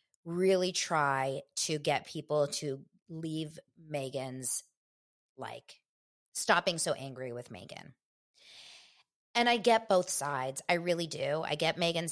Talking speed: 125 wpm